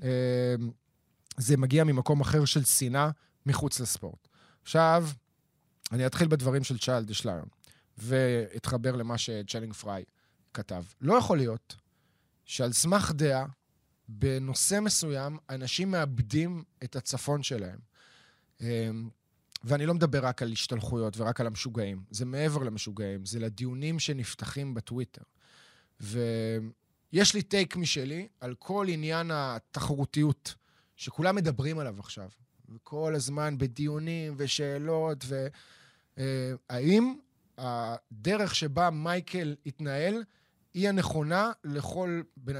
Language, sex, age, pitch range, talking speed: Hebrew, male, 20-39, 120-165 Hz, 110 wpm